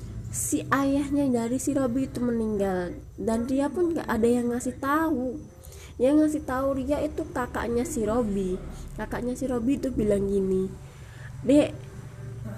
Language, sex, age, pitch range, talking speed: Indonesian, female, 20-39, 205-280 Hz, 150 wpm